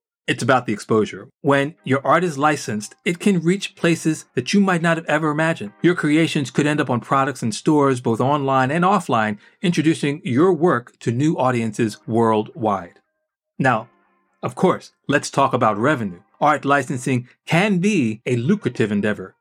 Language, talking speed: English, 165 wpm